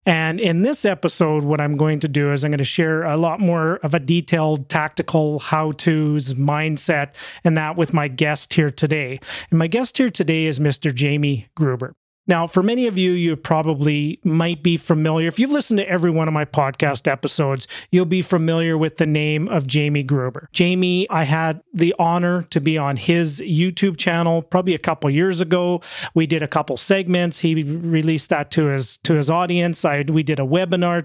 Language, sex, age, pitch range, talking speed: English, male, 40-59, 150-180 Hz, 195 wpm